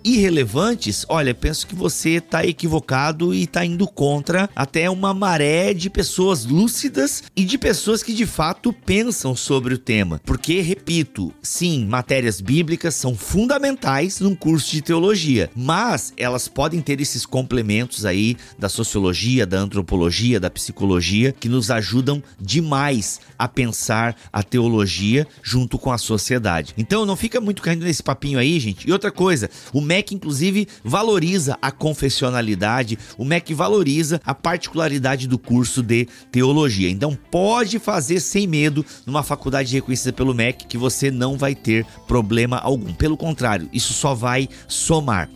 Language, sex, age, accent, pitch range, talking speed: Portuguese, male, 30-49, Brazilian, 125-175 Hz, 150 wpm